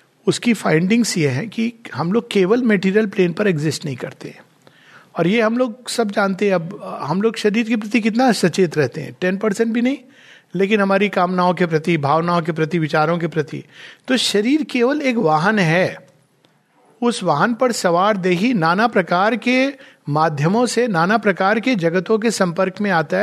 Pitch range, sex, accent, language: 170-230 Hz, male, native, Hindi